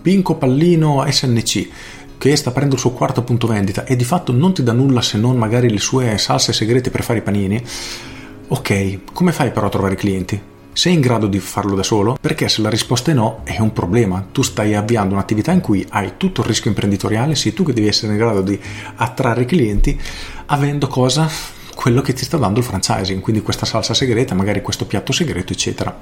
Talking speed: 215 wpm